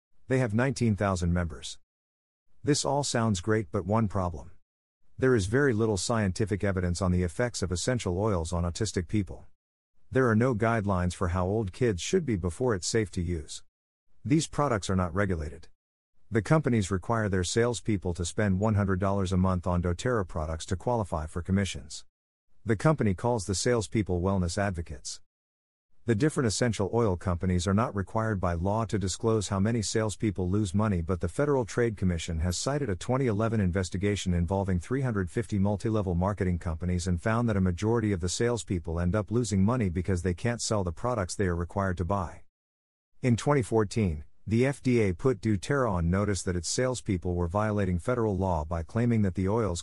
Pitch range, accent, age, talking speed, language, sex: 90-115 Hz, American, 50-69, 175 wpm, English, male